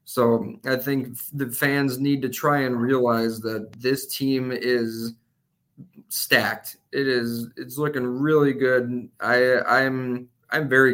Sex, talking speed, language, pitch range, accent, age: male, 135 wpm, English, 120-135 Hz, American, 20-39